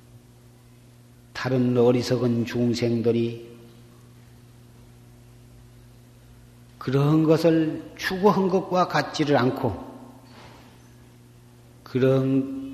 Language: Korean